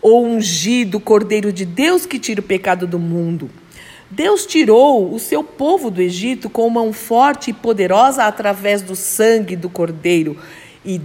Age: 50-69